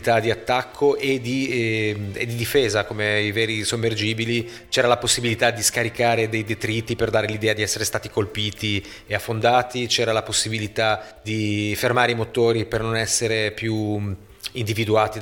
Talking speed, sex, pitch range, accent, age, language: 150 wpm, male, 105-120 Hz, native, 30-49, Italian